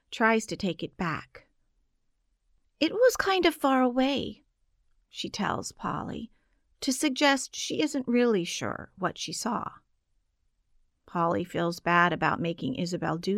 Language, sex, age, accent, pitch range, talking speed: English, female, 40-59, American, 170-230 Hz, 135 wpm